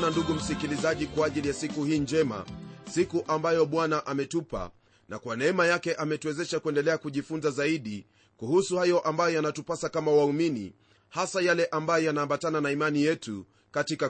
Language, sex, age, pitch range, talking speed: Swahili, male, 30-49, 140-180 Hz, 150 wpm